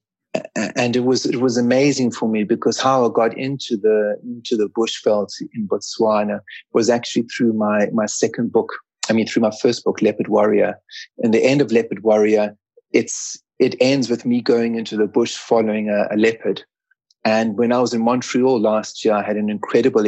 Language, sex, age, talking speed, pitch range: English, male, 30-49, 195 wpm, 105-120 Hz